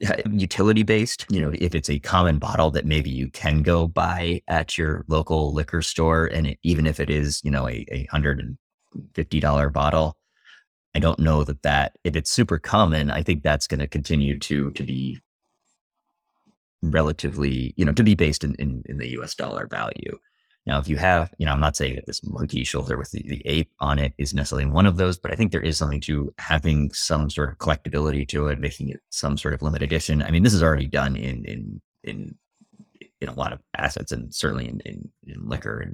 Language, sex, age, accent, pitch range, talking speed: English, male, 30-49, American, 70-80 Hz, 210 wpm